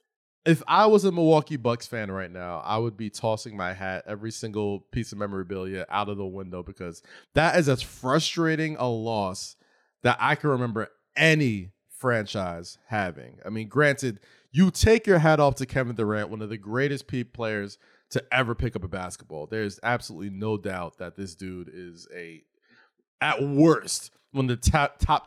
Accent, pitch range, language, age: American, 110-170 Hz, English, 20-39